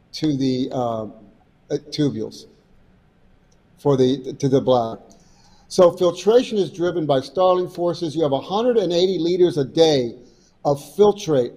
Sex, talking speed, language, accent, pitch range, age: male, 125 wpm, English, American, 145-185 Hz, 50-69